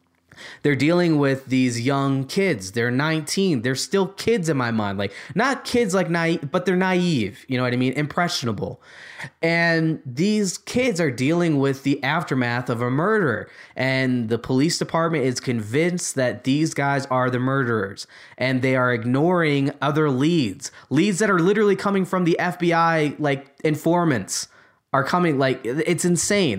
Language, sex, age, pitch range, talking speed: English, male, 20-39, 130-175 Hz, 165 wpm